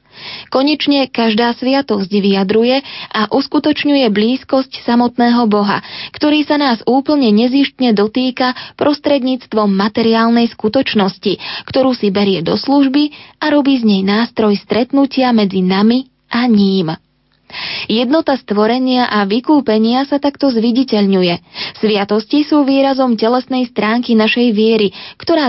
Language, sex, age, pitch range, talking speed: Slovak, female, 20-39, 210-260 Hz, 115 wpm